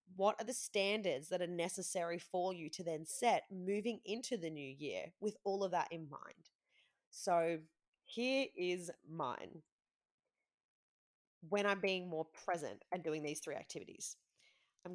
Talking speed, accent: 155 wpm, Australian